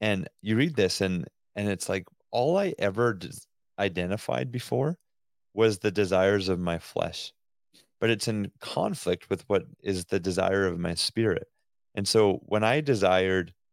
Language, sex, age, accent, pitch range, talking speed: English, male, 30-49, American, 95-115 Hz, 160 wpm